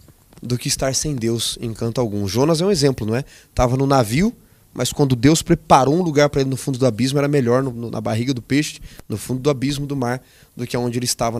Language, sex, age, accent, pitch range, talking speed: Portuguese, male, 20-39, Brazilian, 115-150 Hz, 255 wpm